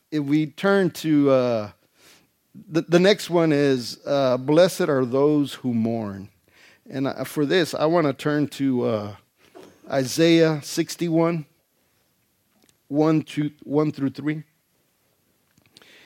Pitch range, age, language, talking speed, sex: 125-150 Hz, 50-69, English, 115 wpm, male